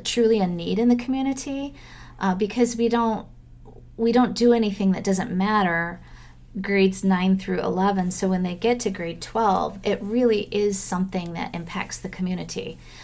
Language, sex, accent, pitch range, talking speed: English, female, American, 180-225 Hz, 165 wpm